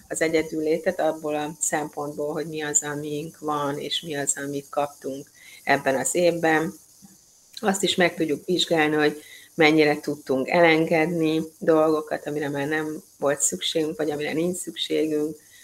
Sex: female